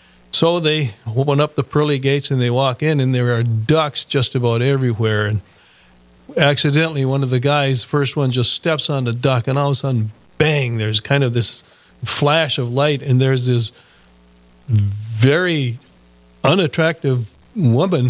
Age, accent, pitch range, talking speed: 40-59, American, 110-150 Hz, 165 wpm